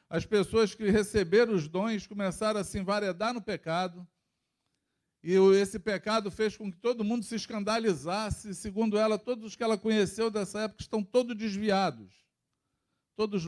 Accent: Brazilian